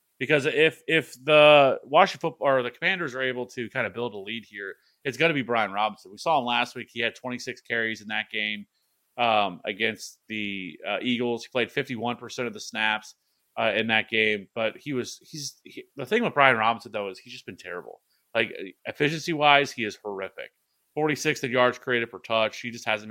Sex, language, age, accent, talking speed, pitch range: male, English, 30-49, American, 210 wpm, 110-140 Hz